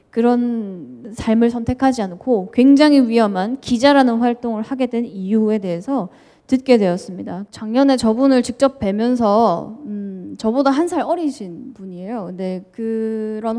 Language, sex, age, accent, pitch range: Korean, female, 10-29, native, 205-260 Hz